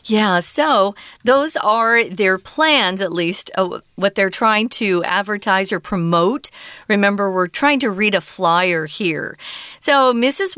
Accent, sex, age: American, female, 40-59